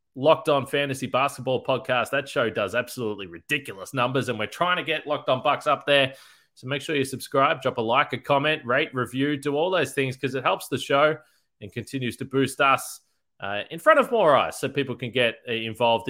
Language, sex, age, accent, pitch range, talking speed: English, male, 20-39, Australian, 125-160 Hz, 215 wpm